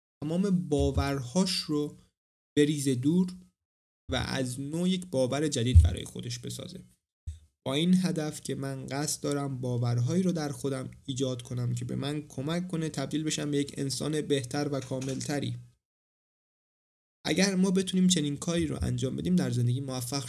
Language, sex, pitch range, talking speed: Persian, male, 120-155 Hz, 155 wpm